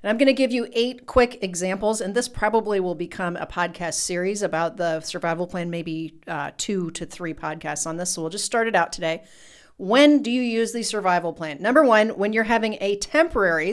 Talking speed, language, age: 220 wpm, English, 40-59